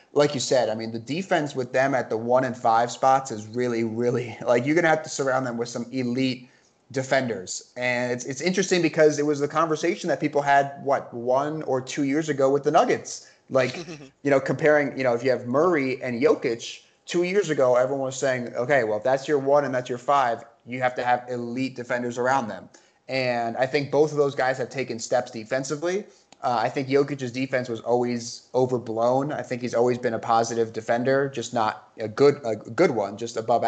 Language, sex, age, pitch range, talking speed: English, male, 30-49, 120-140 Hz, 220 wpm